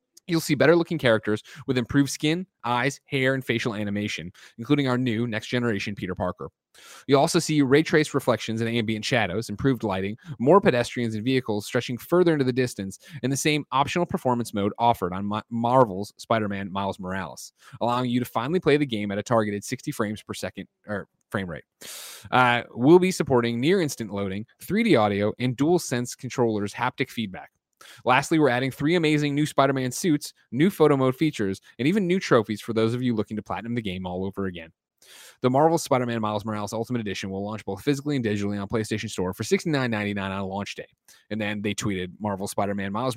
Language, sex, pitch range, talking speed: English, male, 105-135 Hz, 190 wpm